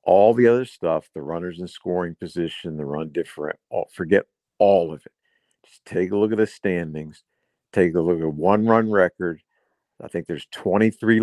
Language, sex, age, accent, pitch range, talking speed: English, male, 60-79, American, 85-105 Hz, 185 wpm